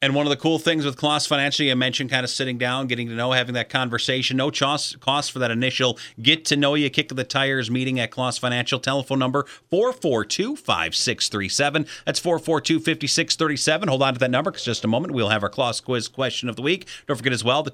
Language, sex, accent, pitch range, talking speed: English, male, American, 125-170 Hz, 225 wpm